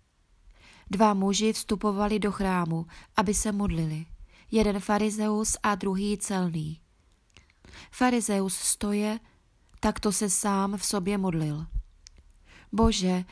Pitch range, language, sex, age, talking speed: 185-210 Hz, Czech, female, 20-39, 105 wpm